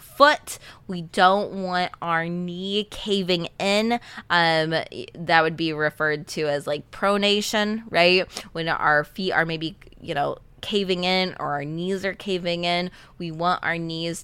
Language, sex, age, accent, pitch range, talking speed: English, female, 20-39, American, 155-200 Hz, 155 wpm